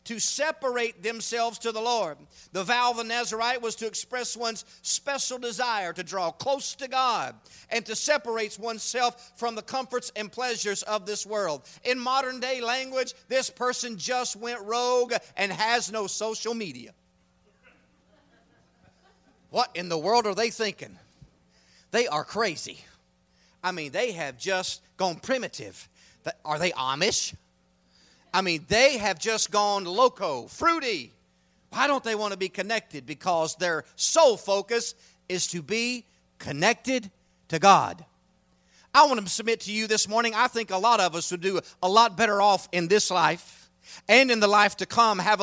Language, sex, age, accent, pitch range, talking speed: English, male, 40-59, American, 185-235 Hz, 160 wpm